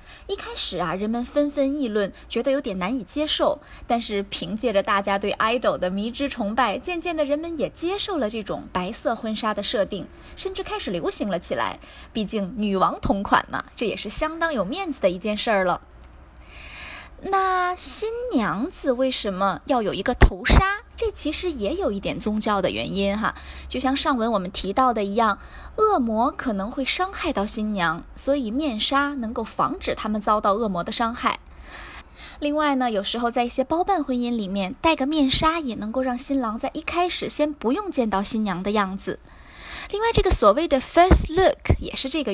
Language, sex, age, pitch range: Chinese, female, 20-39, 210-300 Hz